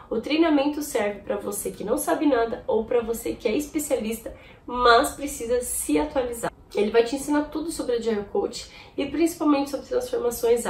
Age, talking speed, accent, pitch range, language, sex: 10-29, 175 wpm, Brazilian, 200-270 Hz, Portuguese, female